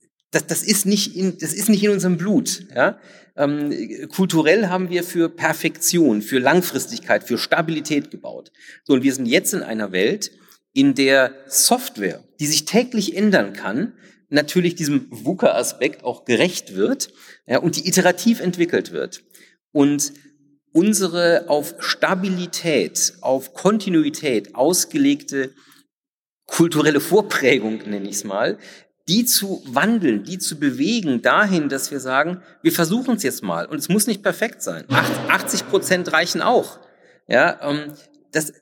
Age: 40-59